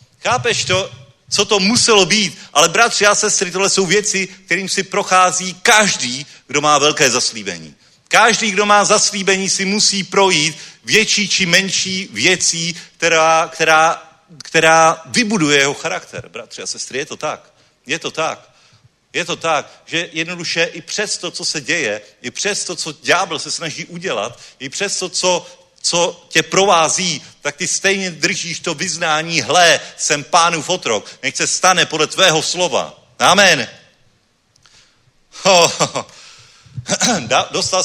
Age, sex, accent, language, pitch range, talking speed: 40-59, male, native, Czech, 165-195 Hz, 145 wpm